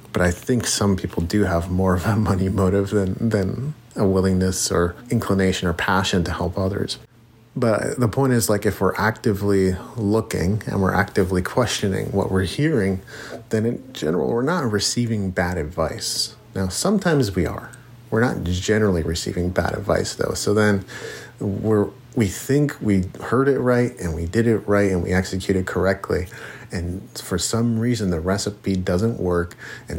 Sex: male